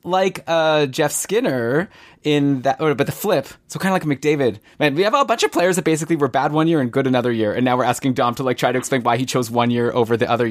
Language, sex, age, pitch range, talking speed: English, male, 20-39, 120-150 Hz, 290 wpm